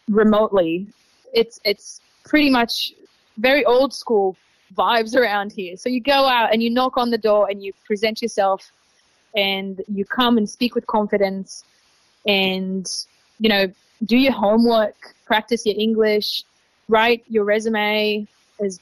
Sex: female